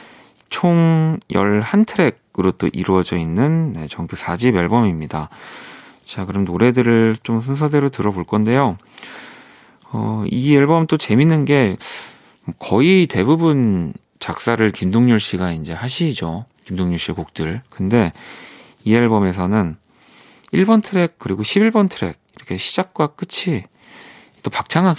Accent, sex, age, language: native, male, 40-59, Korean